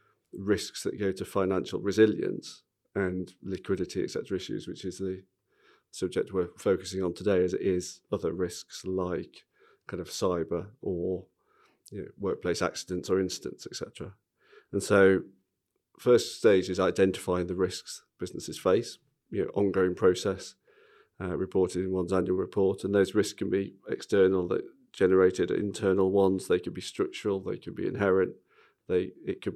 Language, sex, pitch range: English, male, 95-100 Hz